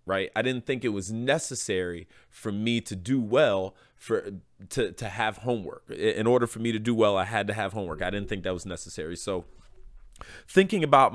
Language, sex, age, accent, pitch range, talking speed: English, male, 30-49, American, 105-130 Hz, 205 wpm